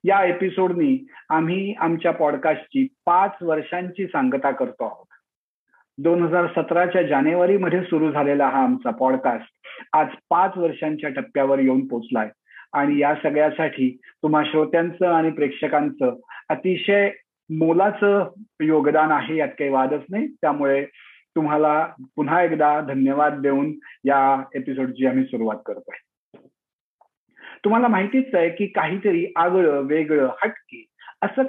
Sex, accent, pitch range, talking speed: male, native, 150-205 Hz, 90 wpm